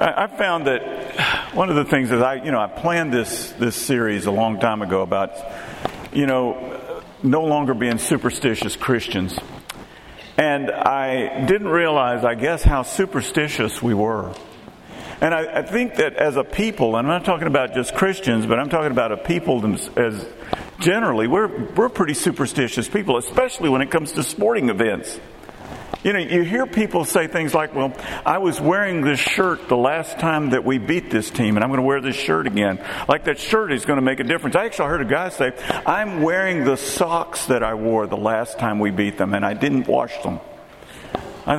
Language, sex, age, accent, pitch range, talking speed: English, male, 50-69, American, 115-170 Hz, 200 wpm